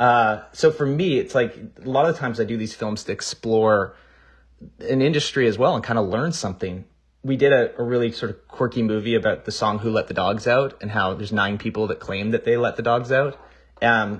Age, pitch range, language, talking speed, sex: 30-49, 105-135 Hz, English, 235 wpm, male